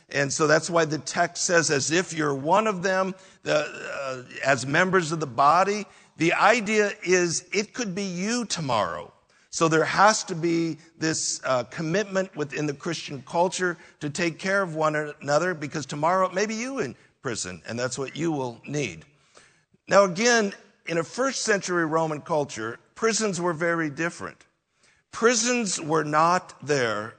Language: English